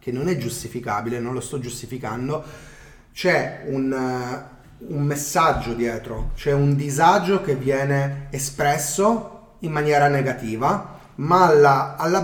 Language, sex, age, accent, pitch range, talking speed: Italian, male, 30-49, native, 120-145 Hz, 125 wpm